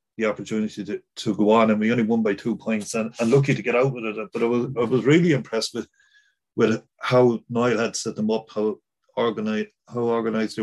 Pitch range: 105-125 Hz